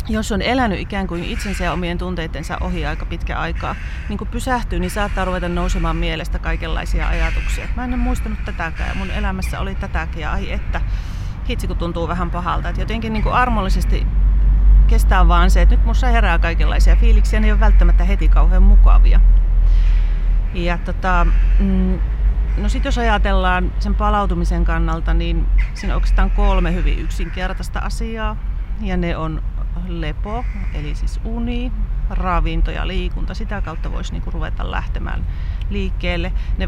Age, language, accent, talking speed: 30-49, Finnish, native, 145 wpm